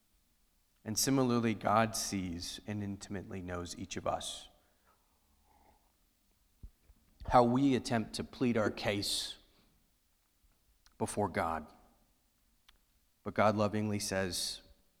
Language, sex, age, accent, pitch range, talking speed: English, male, 30-49, American, 100-125 Hz, 90 wpm